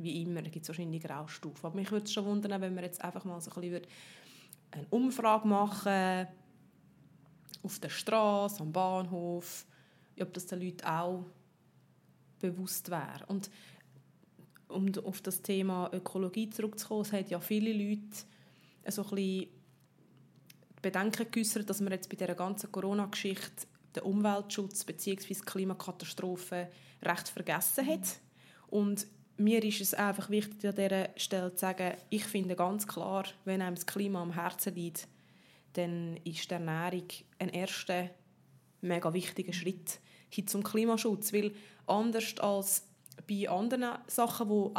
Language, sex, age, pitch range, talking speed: German, female, 20-39, 180-210 Hz, 145 wpm